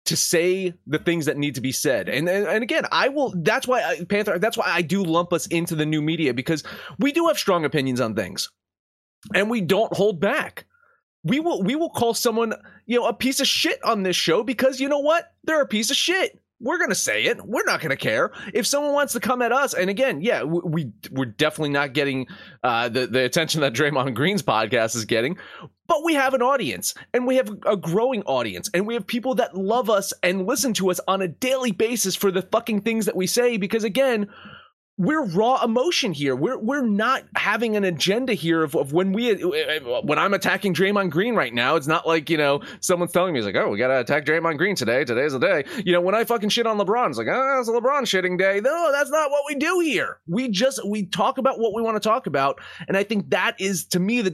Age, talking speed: 30-49, 240 wpm